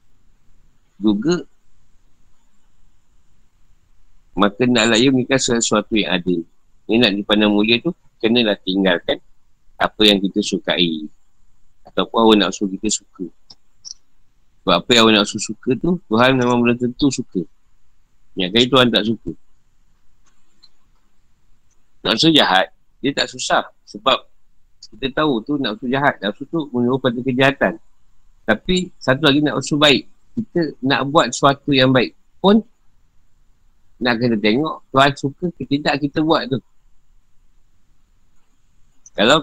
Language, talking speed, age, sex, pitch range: Malay, 130 wpm, 50-69, male, 95-140 Hz